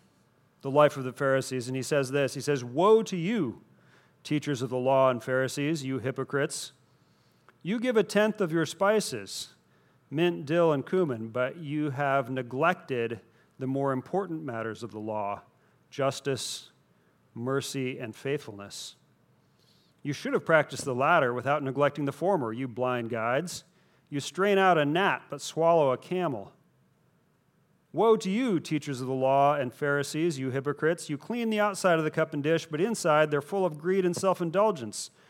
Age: 40-59